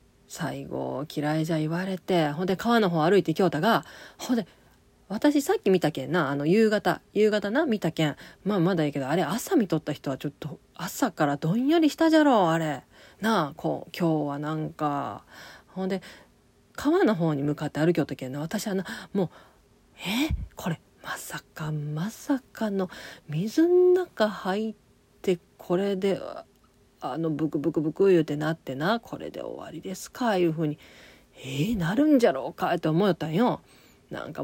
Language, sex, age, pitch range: Japanese, female, 40-59, 155-230 Hz